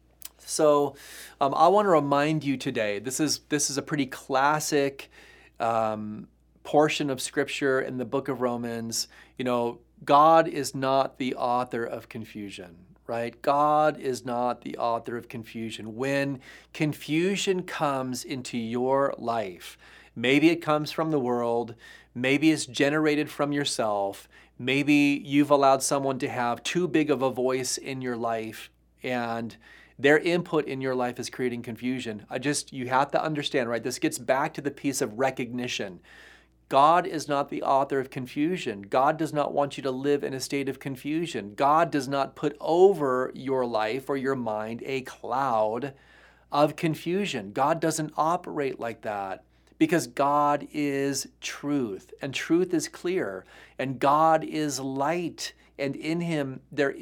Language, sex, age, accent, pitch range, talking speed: English, male, 30-49, American, 125-150 Hz, 160 wpm